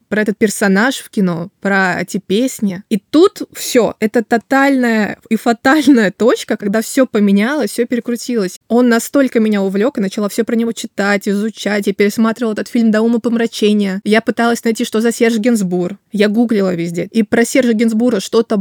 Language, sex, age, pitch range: Russian, female, 20-39, 205-240 Hz